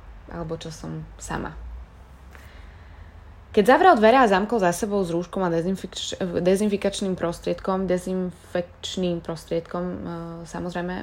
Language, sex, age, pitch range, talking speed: Slovak, female, 20-39, 160-195 Hz, 105 wpm